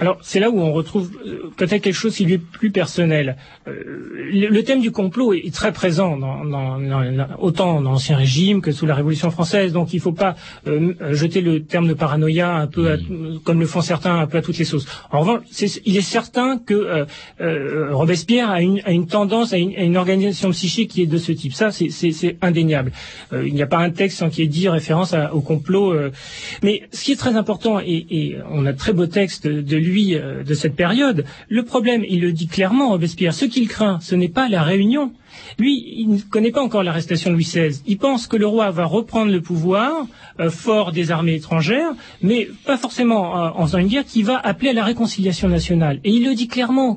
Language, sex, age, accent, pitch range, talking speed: French, male, 30-49, French, 165-215 Hz, 235 wpm